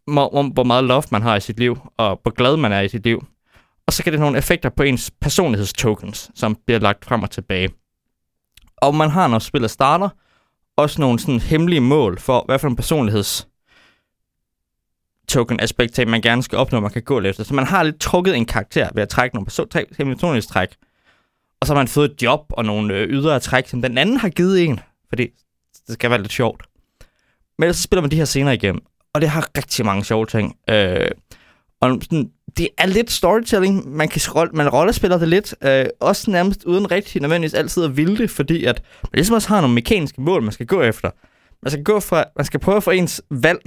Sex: male